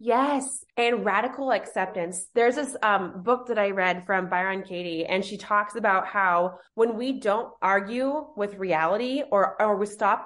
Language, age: English, 20-39